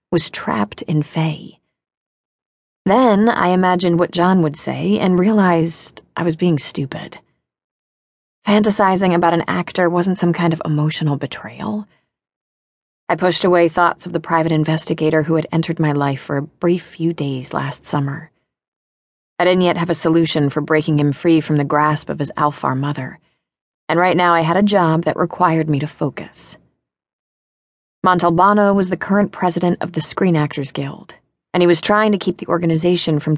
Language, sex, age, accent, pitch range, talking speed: English, female, 30-49, American, 155-180 Hz, 170 wpm